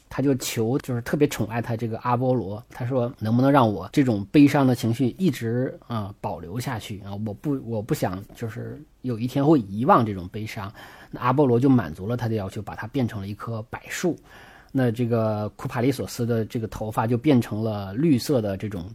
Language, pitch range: Chinese, 110-140 Hz